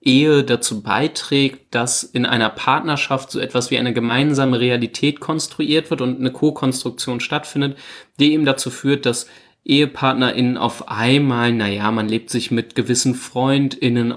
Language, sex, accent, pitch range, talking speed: German, male, German, 120-145 Hz, 145 wpm